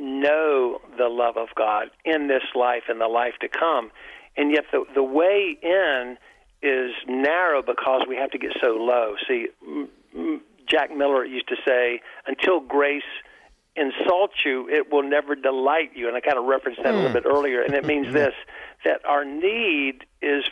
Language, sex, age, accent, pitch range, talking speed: English, male, 50-69, American, 125-155 Hz, 180 wpm